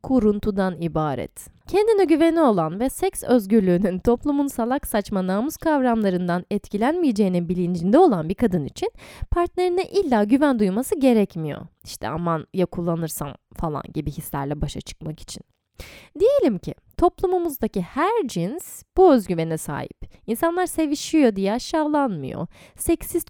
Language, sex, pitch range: Turkish, female, 180-285 Hz